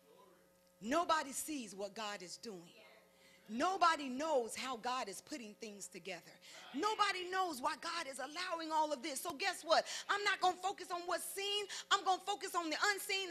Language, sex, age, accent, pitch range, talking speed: English, female, 40-59, American, 270-400 Hz, 185 wpm